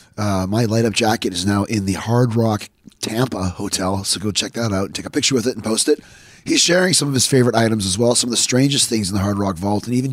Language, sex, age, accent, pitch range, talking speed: English, male, 30-49, American, 110-135 Hz, 280 wpm